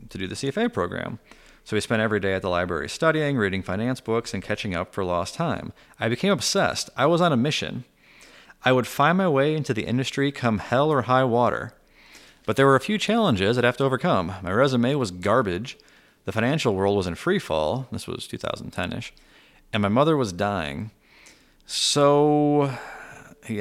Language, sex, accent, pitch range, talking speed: English, male, American, 100-135 Hz, 190 wpm